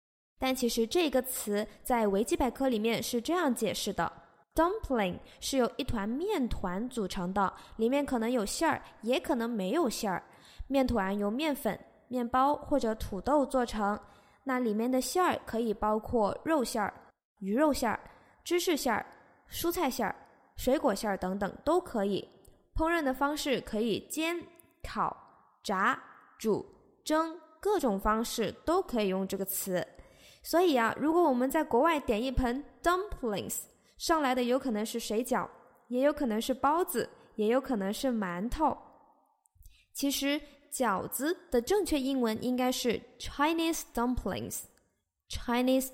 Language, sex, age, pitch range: Chinese, female, 20-39, 220-290 Hz